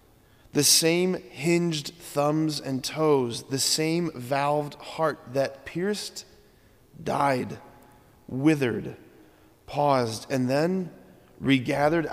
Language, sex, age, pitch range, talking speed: English, male, 30-49, 125-150 Hz, 90 wpm